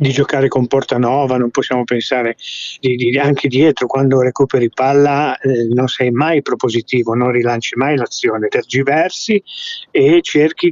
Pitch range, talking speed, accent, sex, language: 120-160 Hz, 150 wpm, native, male, Italian